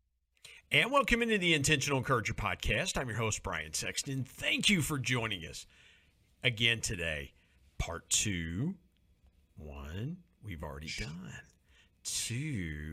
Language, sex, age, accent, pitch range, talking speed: English, male, 50-69, American, 85-135 Hz, 120 wpm